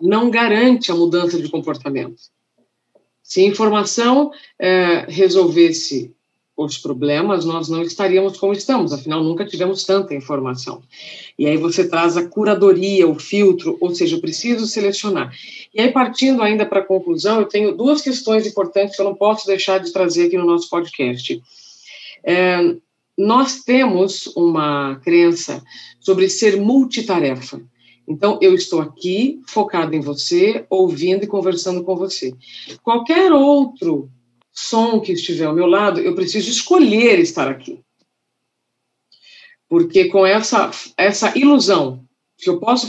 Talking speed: 140 wpm